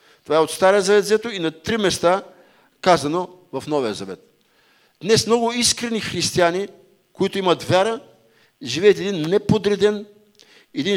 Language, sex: English, male